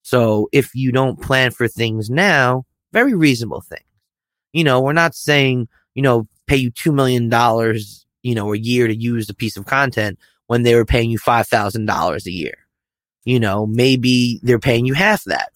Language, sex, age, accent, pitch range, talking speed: English, male, 20-39, American, 110-130 Hz, 185 wpm